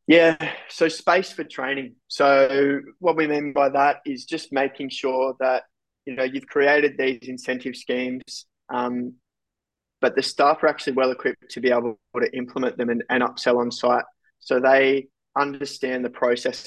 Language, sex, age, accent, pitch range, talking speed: English, male, 20-39, Australian, 125-135 Hz, 170 wpm